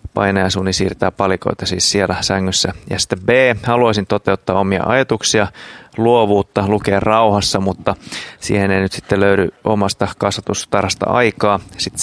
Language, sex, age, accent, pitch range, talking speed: Finnish, male, 30-49, native, 95-110 Hz, 140 wpm